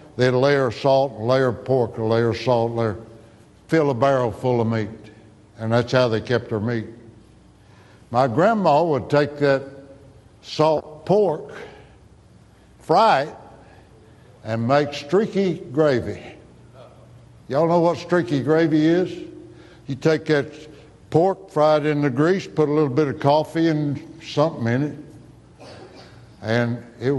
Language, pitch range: English, 115-155 Hz